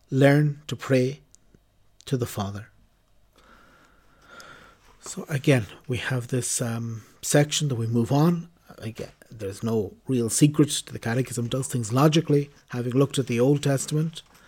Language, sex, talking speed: English, male, 145 wpm